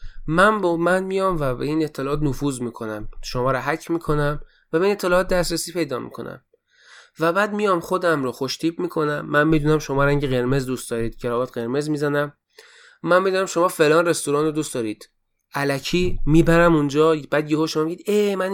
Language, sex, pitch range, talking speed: Persian, male, 130-170 Hz, 185 wpm